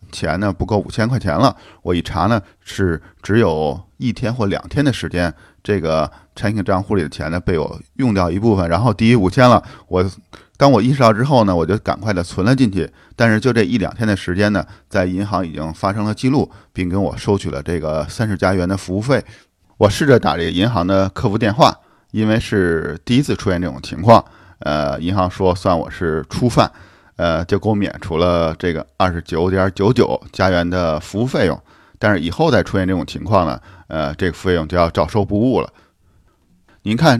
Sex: male